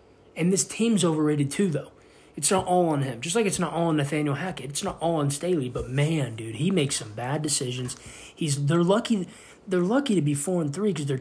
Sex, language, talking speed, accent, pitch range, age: male, English, 235 wpm, American, 135-150 Hz, 20-39